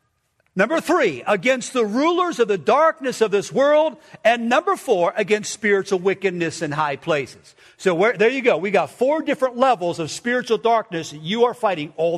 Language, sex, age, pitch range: English, male, 50-69, 165-250 Hz